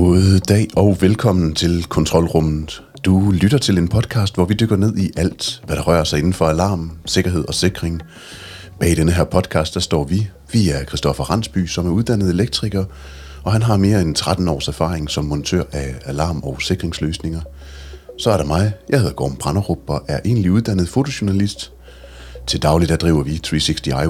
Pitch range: 75-95 Hz